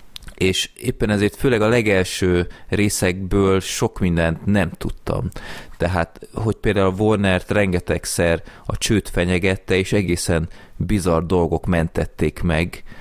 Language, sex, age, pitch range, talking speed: Hungarian, male, 30-49, 85-100 Hz, 120 wpm